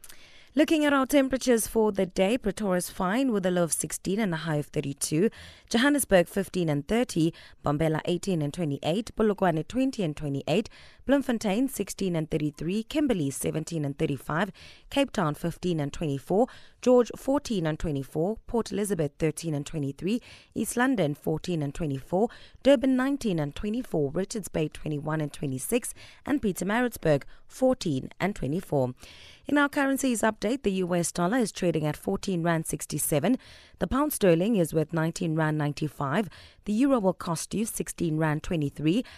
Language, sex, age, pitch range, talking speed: English, female, 20-39, 155-235 Hz, 155 wpm